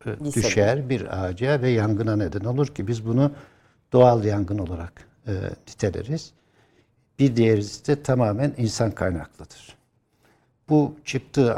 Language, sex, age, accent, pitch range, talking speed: Turkish, male, 60-79, native, 105-130 Hz, 120 wpm